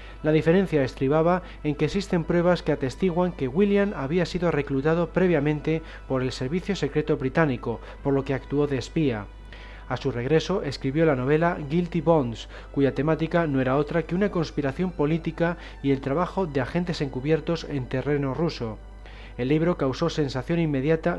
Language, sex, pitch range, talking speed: Spanish, male, 135-170 Hz, 160 wpm